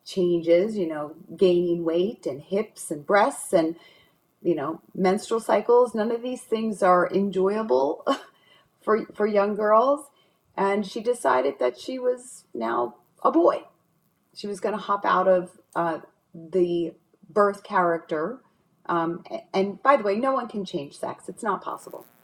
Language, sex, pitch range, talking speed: English, female, 165-200 Hz, 155 wpm